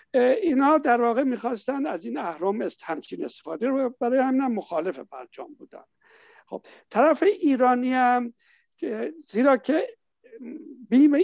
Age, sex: 60-79, male